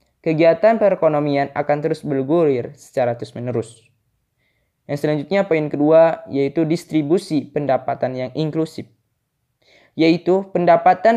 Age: 10-29